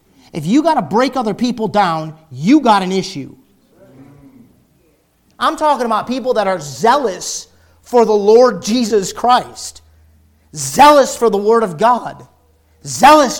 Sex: male